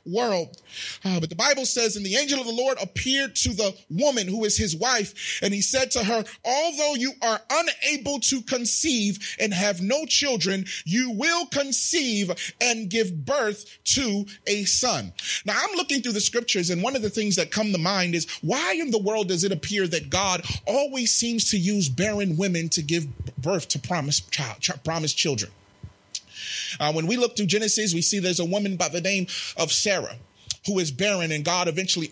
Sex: male